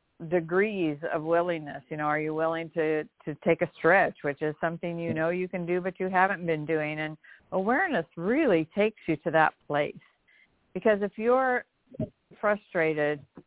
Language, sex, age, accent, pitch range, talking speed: English, female, 50-69, American, 170-215 Hz, 170 wpm